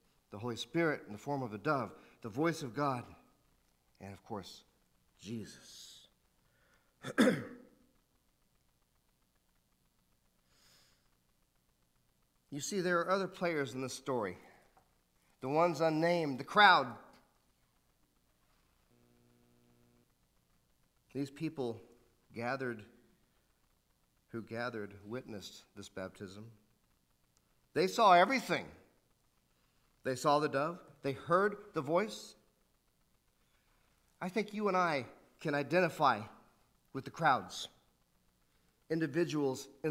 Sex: male